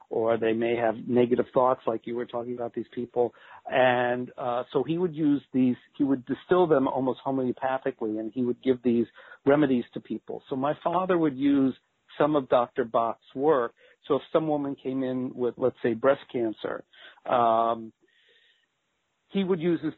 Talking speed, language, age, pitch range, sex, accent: 180 wpm, English, 50-69, 120-145 Hz, male, American